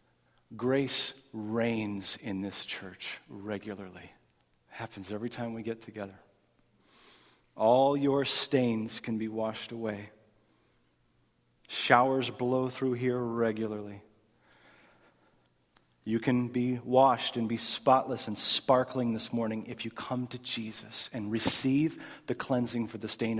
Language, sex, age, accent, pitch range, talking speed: English, male, 40-59, American, 105-130 Hz, 120 wpm